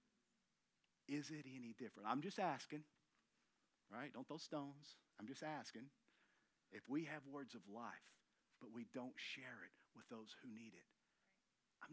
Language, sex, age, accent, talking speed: English, male, 40-59, American, 155 wpm